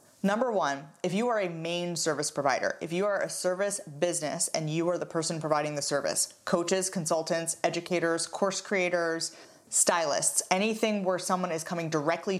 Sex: female